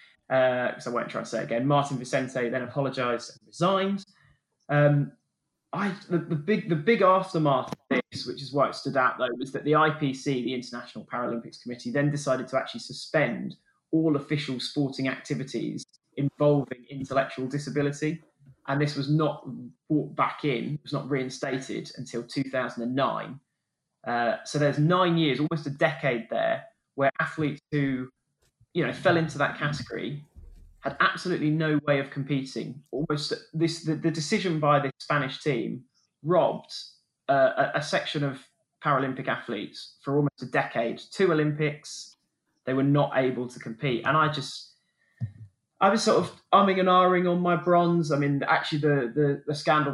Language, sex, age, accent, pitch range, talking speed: English, male, 20-39, British, 130-155 Hz, 165 wpm